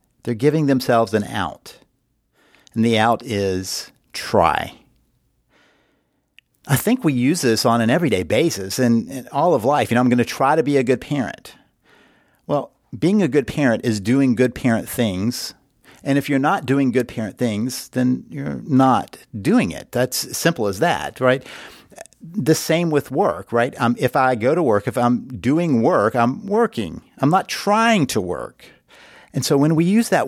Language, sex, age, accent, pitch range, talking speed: English, male, 50-69, American, 115-135 Hz, 180 wpm